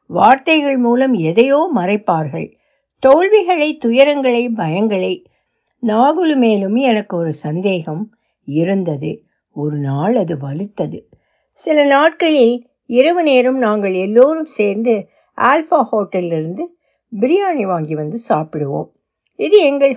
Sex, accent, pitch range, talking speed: female, native, 200-270 Hz, 100 wpm